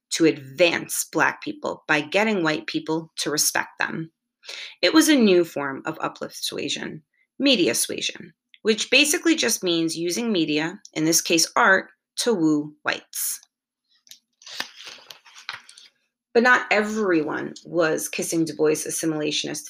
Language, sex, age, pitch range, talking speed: English, female, 30-49, 160-235 Hz, 130 wpm